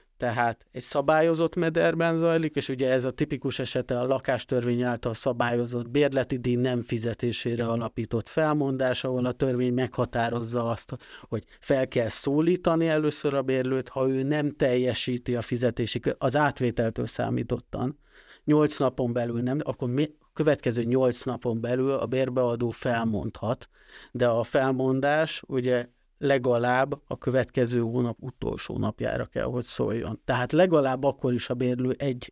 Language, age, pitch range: Hungarian, 30-49, 120-140 Hz